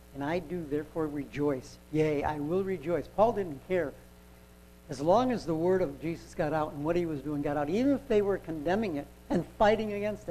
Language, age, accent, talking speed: English, 60-79, American, 215 wpm